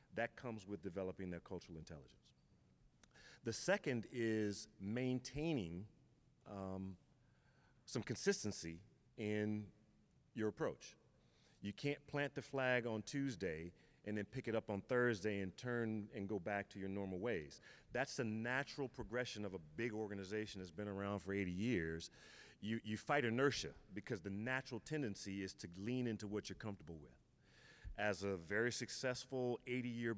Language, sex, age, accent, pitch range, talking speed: English, male, 40-59, American, 95-120 Hz, 150 wpm